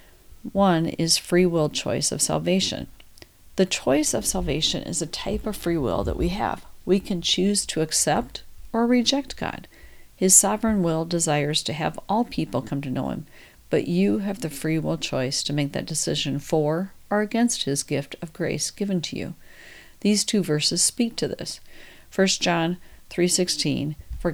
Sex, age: female, 50-69